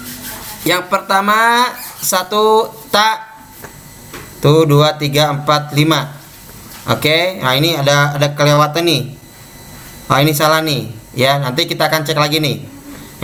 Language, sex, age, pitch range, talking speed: Malay, male, 20-39, 155-205 Hz, 125 wpm